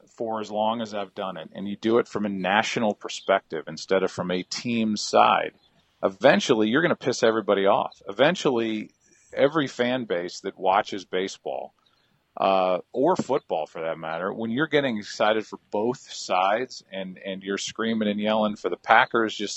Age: 40-59